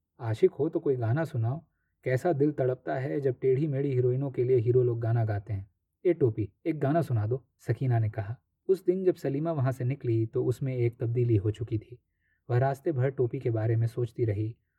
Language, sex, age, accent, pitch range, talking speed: Hindi, male, 20-39, native, 110-135 Hz, 215 wpm